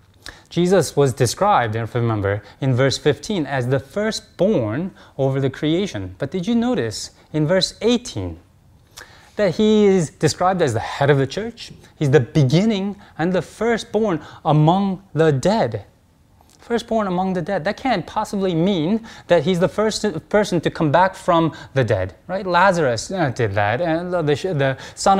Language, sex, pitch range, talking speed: English, male, 125-190 Hz, 160 wpm